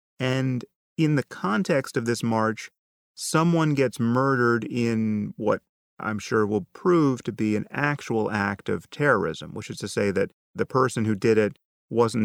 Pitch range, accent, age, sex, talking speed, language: 100-120 Hz, American, 30-49, male, 165 wpm, English